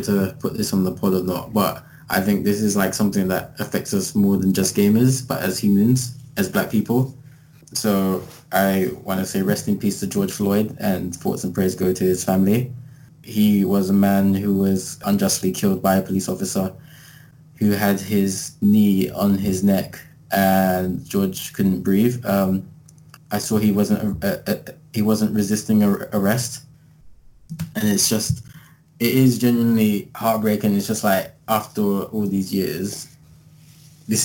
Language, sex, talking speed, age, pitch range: English, male, 165 wpm, 20-39, 100-135 Hz